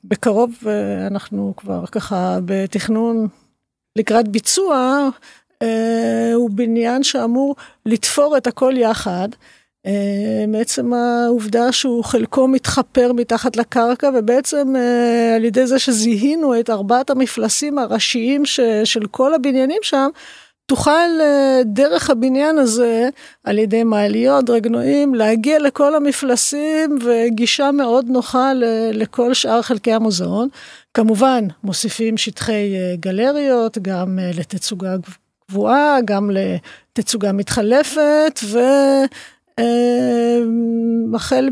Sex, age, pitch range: female, 50-69, 220-265 Hz